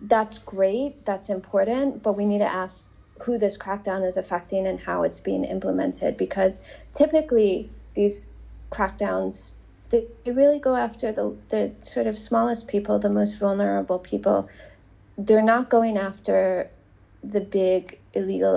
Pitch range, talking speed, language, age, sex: 175-215 Hz, 140 wpm, English, 30-49, female